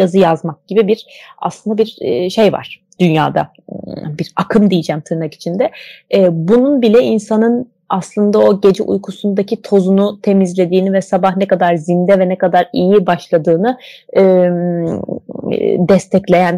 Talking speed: 125 wpm